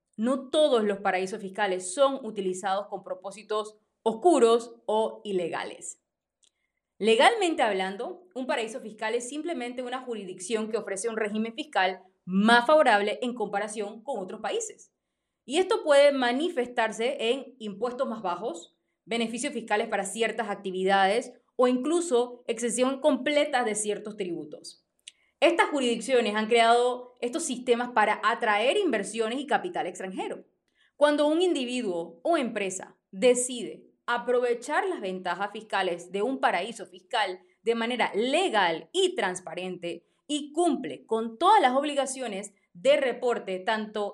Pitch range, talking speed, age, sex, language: 205-265 Hz, 125 wpm, 20-39, female, Spanish